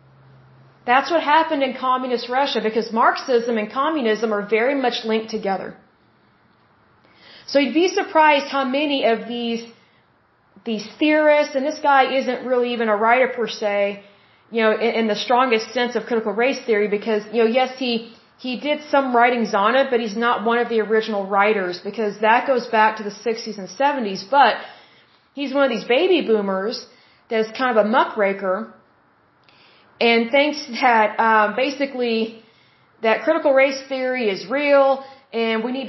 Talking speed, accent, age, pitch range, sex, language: 170 wpm, American, 30-49, 220-275 Hz, female, English